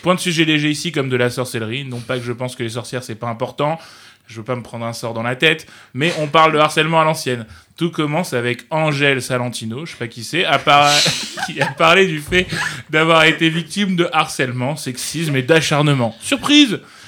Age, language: 20-39, French